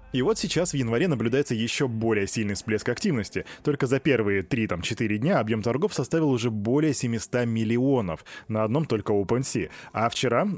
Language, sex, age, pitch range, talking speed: Russian, male, 20-39, 110-140 Hz, 165 wpm